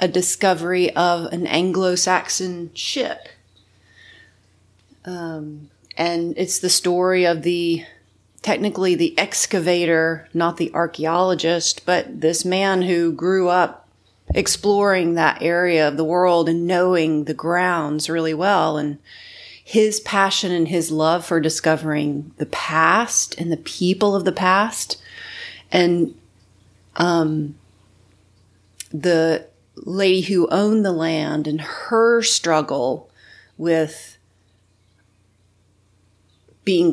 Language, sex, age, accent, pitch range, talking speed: English, female, 30-49, American, 150-180 Hz, 105 wpm